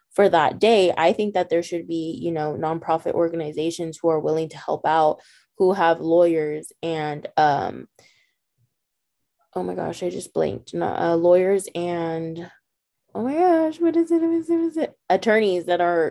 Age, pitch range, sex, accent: 20-39, 160-180 Hz, female, American